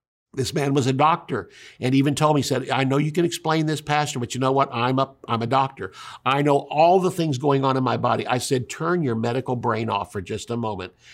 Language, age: English, 60-79